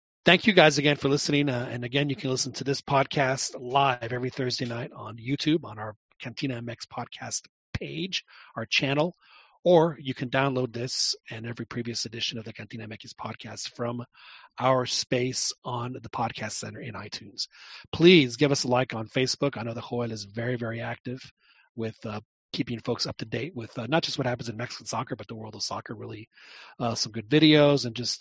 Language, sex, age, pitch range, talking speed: English, male, 30-49, 115-140 Hz, 200 wpm